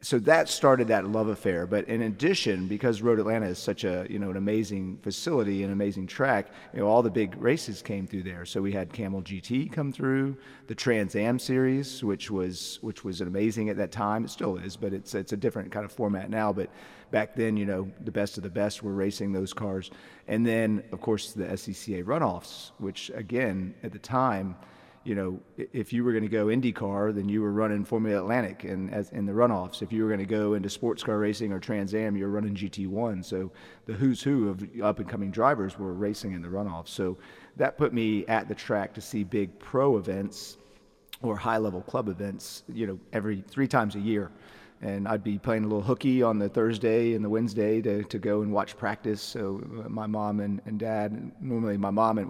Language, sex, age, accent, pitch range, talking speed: English, male, 30-49, American, 100-110 Hz, 215 wpm